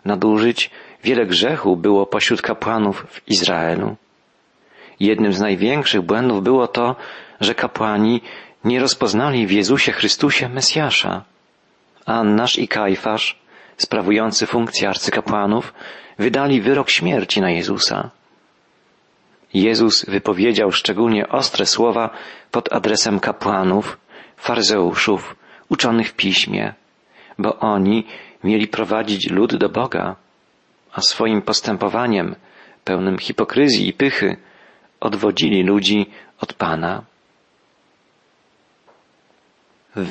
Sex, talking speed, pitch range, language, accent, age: male, 95 wpm, 100-115 Hz, Polish, native, 40-59